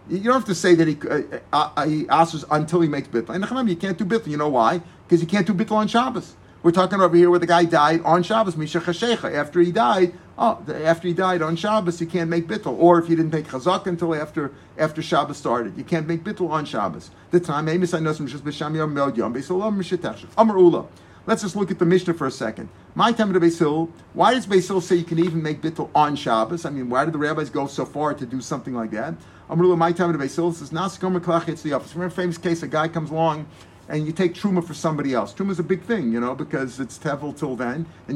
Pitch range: 150-180 Hz